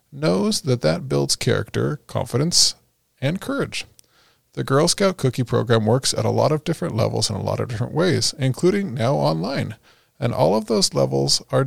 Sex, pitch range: male, 115-150 Hz